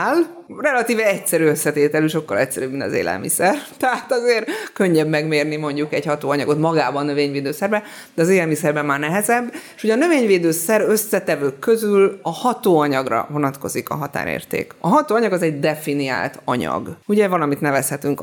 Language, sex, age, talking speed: Hungarian, female, 30-49, 140 wpm